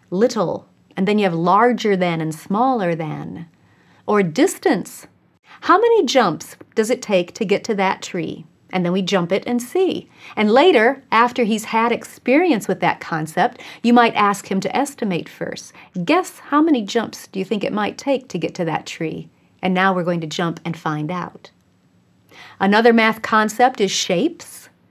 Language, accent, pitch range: English, American, 180-250 Hz